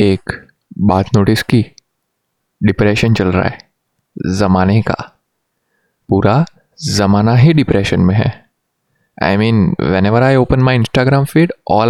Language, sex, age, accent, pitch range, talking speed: Hindi, male, 20-39, native, 100-145 Hz, 130 wpm